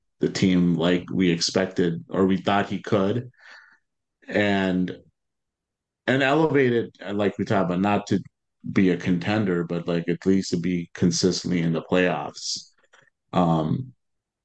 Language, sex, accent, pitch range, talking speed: English, male, American, 95-110 Hz, 135 wpm